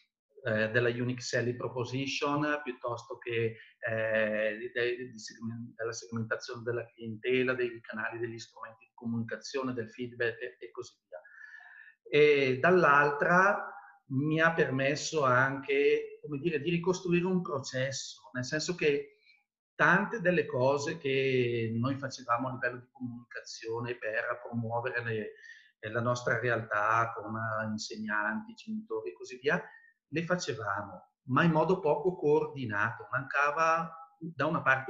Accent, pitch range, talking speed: native, 115-165 Hz, 130 wpm